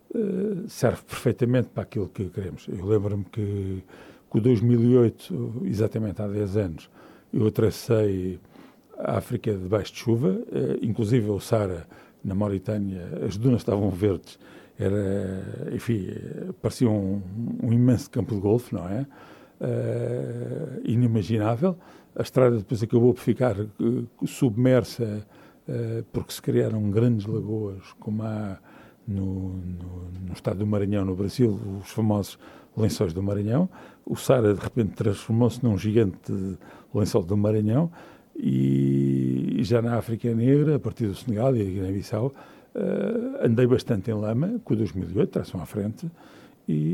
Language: English